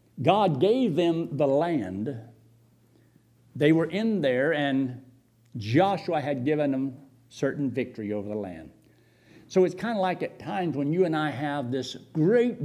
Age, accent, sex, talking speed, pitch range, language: 60-79, American, male, 155 wpm, 120-190 Hz, English